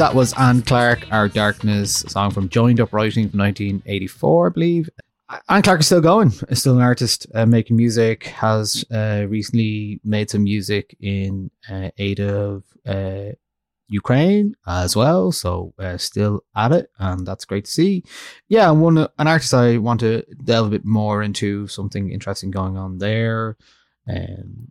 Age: 20-39